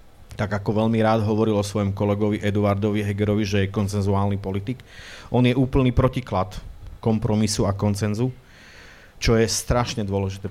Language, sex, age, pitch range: Slovak, male, 30-49, 100-115 Hz